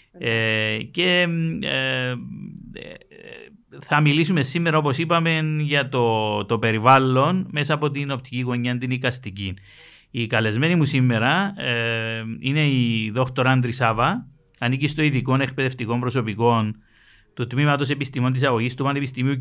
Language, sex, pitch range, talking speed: Greek, male, 115-150 Hz, 120 wpm